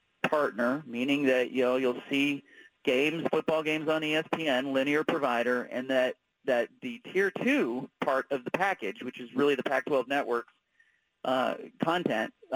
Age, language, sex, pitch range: 40-59, English, male, 130-155 Hz